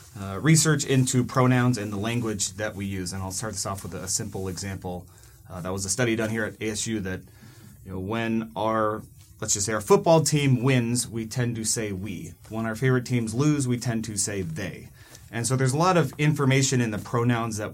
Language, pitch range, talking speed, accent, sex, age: English, 105-125 Hz, 220 wpm, American, male, 30-49